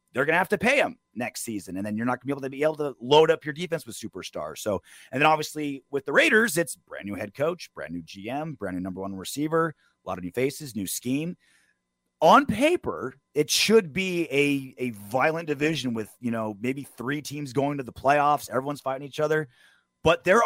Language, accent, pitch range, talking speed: English, American, 115-170 Hz, 230 wpm